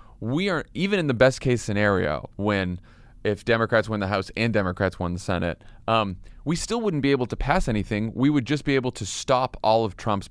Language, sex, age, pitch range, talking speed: English, male, 30-49, 105-140 Hz, 220 wpm